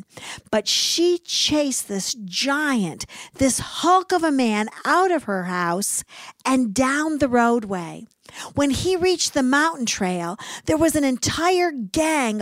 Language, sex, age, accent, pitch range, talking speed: English, female, 50-69, American, 210-290 Hz, 140 wpm